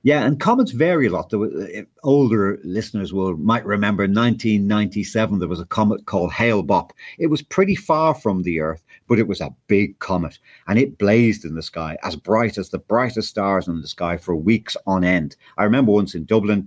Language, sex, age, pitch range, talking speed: English, male, 50-69, 100-140 Hz, 210 wpm